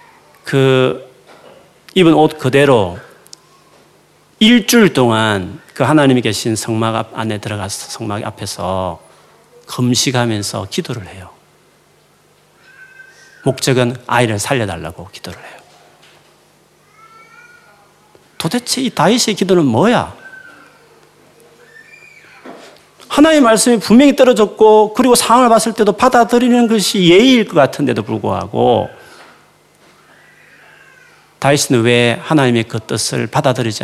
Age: 40-59